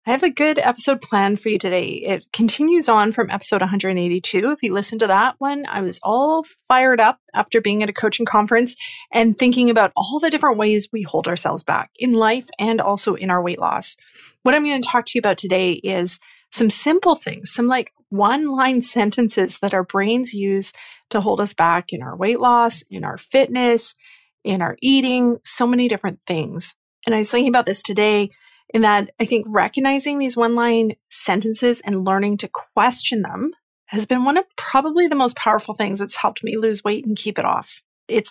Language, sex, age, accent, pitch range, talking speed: English, female, 30-49, American, 200-255 Hz, 200 wpm